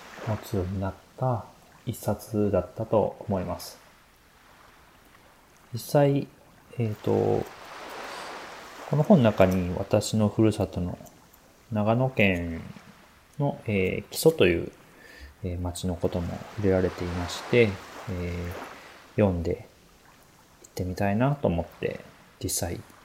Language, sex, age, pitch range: Japanese, male, 30-49, 90-115 Hz